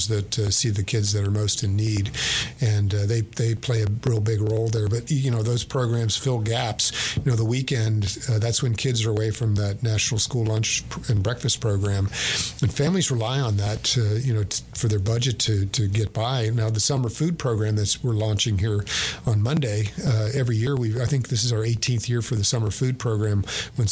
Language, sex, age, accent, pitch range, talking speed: English, male, 50-69, American, 110-125 Hz, 225 wpm